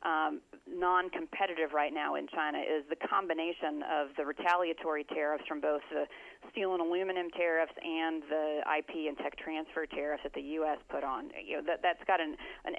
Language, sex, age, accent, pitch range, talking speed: English, female, 40-59, American, 155-185 Hz, 190 wpm